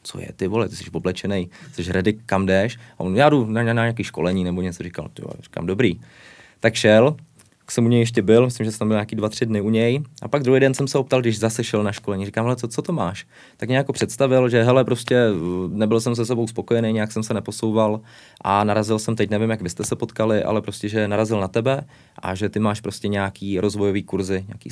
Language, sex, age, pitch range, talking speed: Slovak, male, 20-39, 100-120 Hz, 245 wpm